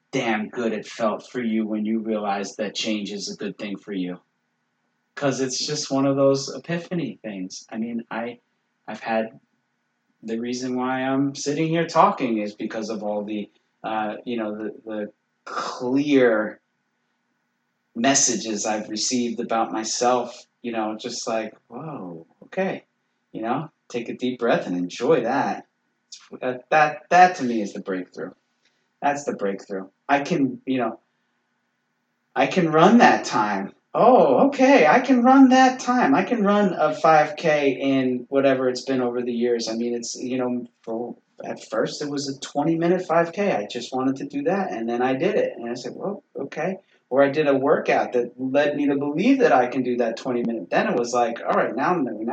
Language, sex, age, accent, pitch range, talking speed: English, male, 30-49, American, 110-150 Hz, 185 wpm